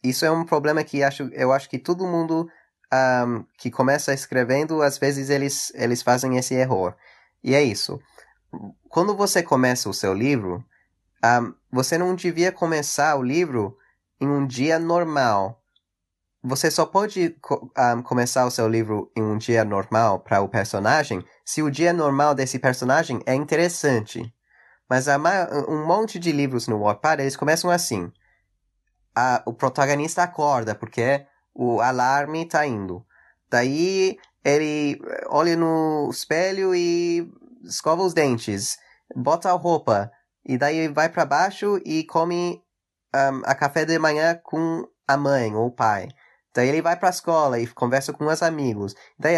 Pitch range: 125-170 Hz